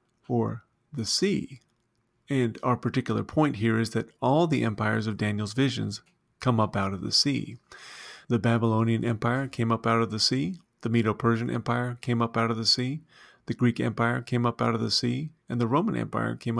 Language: English